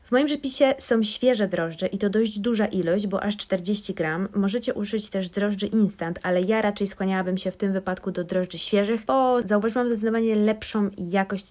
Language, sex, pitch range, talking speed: Polish, female, 180-215 Hz, 190 wpm